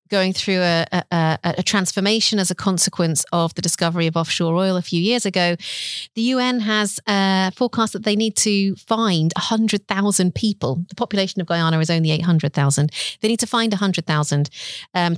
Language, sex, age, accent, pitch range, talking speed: English, female, 40-59, British, 160-190 Hz, 175 wpm